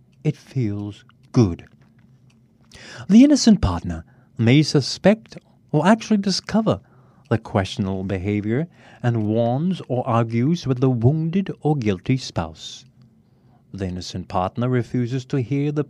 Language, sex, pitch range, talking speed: English, male, 115-155 Hz, 115 wpm